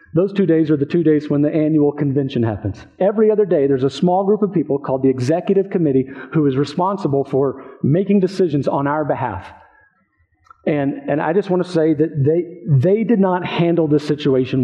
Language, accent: English, American